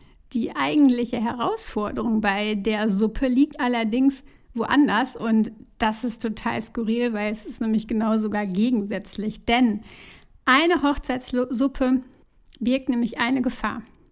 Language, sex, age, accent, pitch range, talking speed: German, female, 60-79, German, 225-280 Hz, 120 wpm